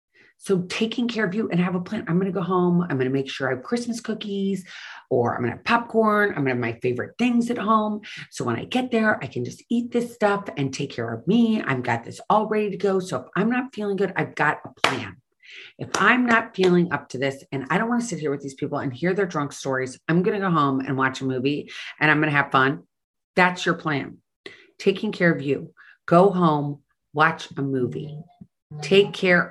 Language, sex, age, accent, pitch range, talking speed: English, female, 40-59, American, 140-200 Hz, 250 wpm